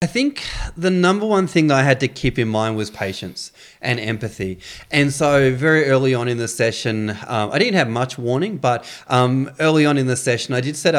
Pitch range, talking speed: 115-150 Hz, 225 wpm